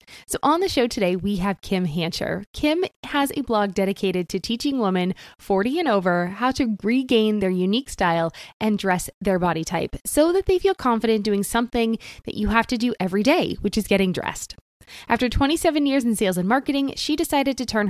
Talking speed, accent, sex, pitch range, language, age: 200 wpm, American, female, 195-270 Hz, English, 20-39